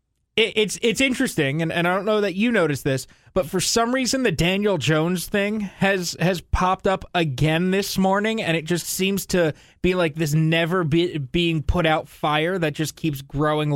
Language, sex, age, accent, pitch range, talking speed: English, male, 20-39, American, 155-200 Hz, 185 wpm